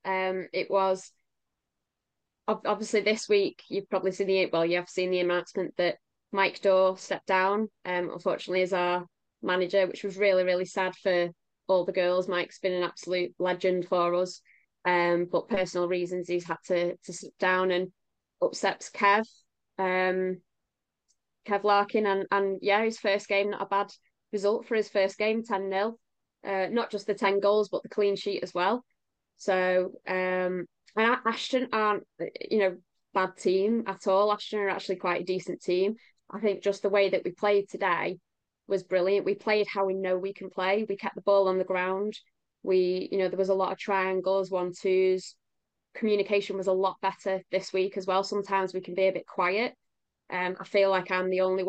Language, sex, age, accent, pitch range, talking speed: English, female, 20-39, British, 185-205 Hz, 190 wpm